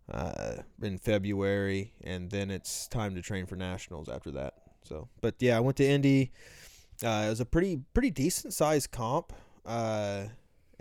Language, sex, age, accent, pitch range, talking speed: English, male, 20-39, American, 95-125 Hz, 165 wpm